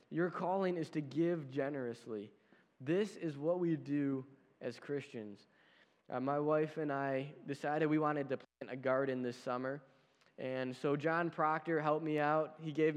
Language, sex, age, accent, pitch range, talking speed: English, male, 10-29, American, 140-175 Hz, 165 wpm